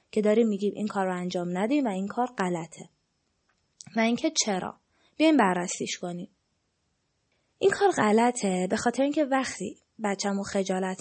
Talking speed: 145 wpm